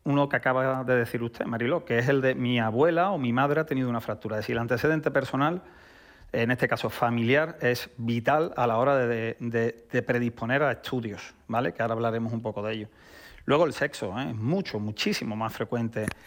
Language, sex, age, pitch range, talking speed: Spanish, male, 40-59, 115-135 Hz, 210 wpm